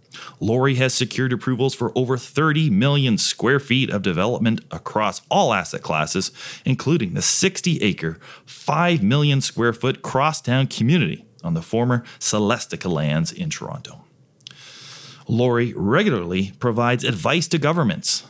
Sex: male